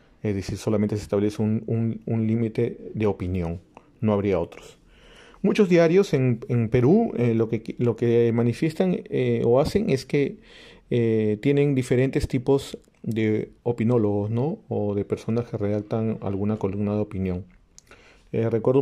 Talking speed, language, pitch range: 145 wpm, English, 105-130 Hz